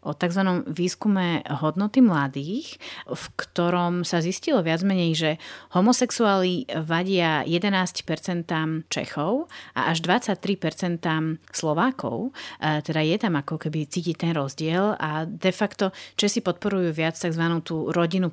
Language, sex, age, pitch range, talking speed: Slovak, female, 30-49, 160-195 Hz, 125 wpm